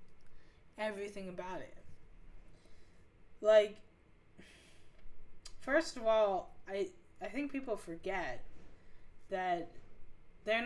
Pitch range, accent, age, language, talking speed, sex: 165-210 Hz, American, 10-29, English, 80 wpm, female